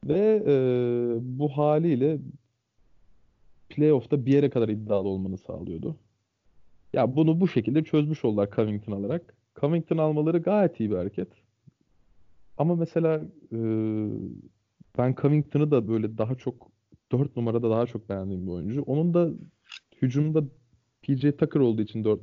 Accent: native